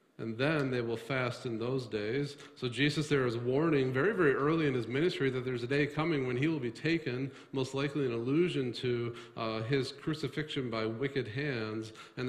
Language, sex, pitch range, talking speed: English, male, 115-150 Hz, 200 wpm